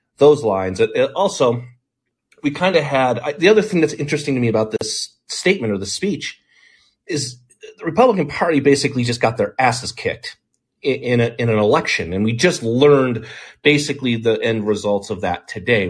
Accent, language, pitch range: American, English, 100-130 Hz